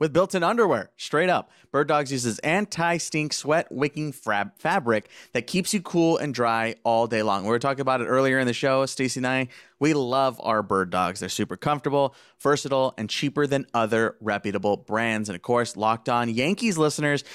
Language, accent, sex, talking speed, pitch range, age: English, American, male, 195 wpm, 110-150 Hz, 30-49